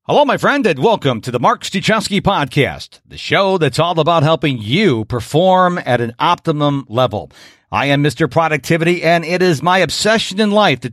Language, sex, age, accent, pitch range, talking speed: English, male, 50-69, American, 135-195 Hz, 185 wpm